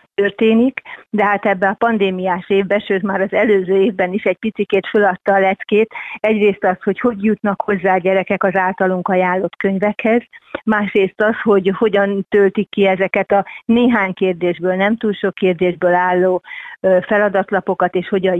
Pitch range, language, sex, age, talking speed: 185-205 Hz, Hungarian, female, 30-49, 155 wpm